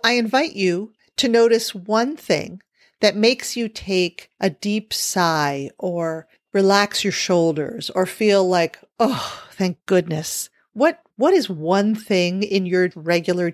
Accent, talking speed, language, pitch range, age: American, 140 wpm, English, 175-225 Hz, 50-69